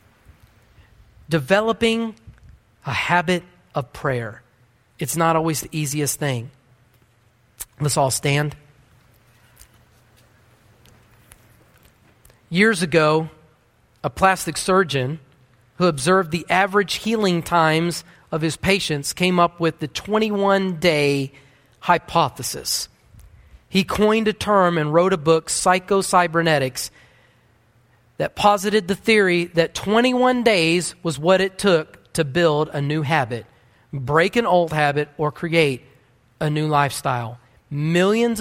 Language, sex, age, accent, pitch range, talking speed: English, male, 40-59, American, 125-175 Hz, 110 wpm